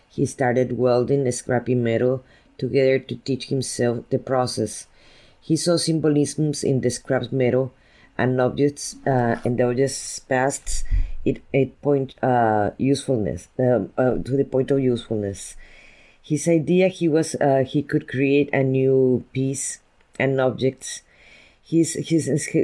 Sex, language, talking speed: female, English, 135 wpm